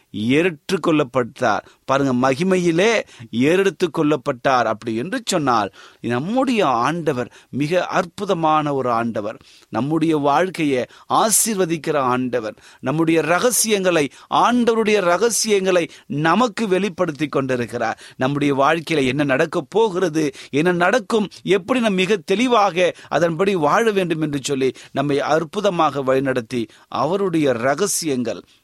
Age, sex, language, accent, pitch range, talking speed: 30-49, male, Tamil, native, 120-175 Hz, 95 wpm